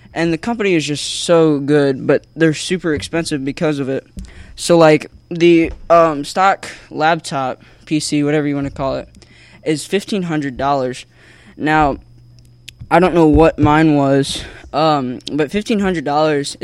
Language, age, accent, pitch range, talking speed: English, 10-29, American, 140-160 Hz, 140 wpm